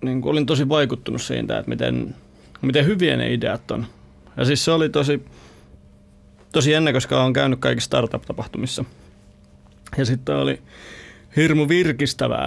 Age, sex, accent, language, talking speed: 30-49, male, native, Finnish, 145 wpm